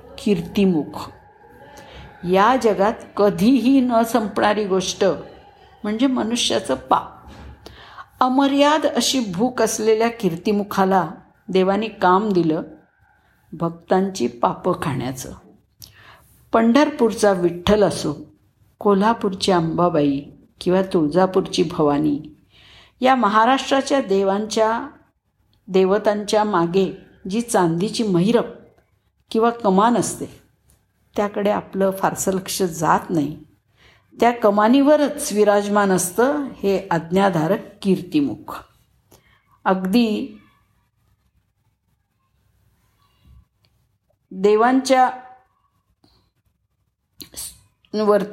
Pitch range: 170-225 Hz